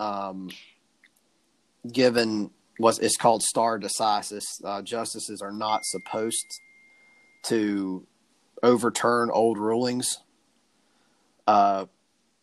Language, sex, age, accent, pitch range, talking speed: English, male, 30-49, American, 105-120 Hz, 80 wpm